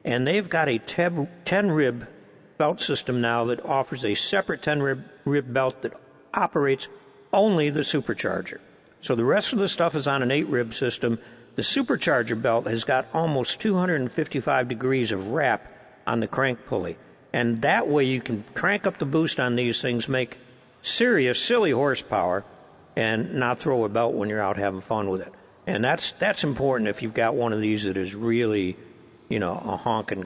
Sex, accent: male, American